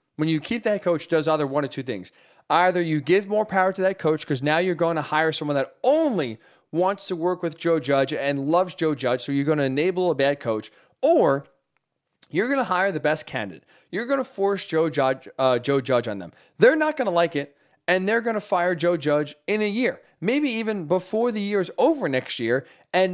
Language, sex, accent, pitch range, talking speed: English, male, American, 150-195 Hz, 235 wpm